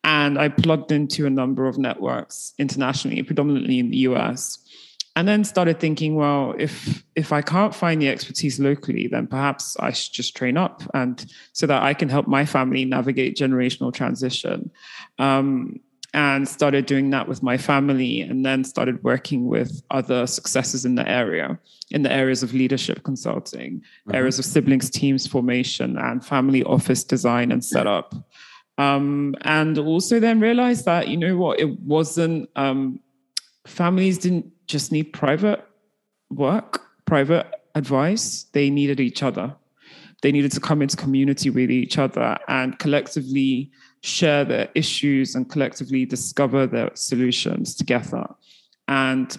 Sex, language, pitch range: male, English, 130-155 Hz